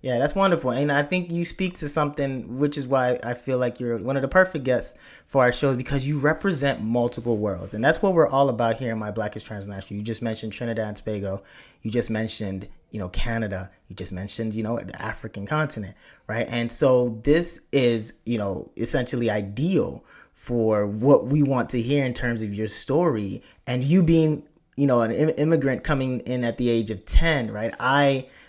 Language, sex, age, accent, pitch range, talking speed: English, male, 20-39, American, 110-140 Hz, 205 wpm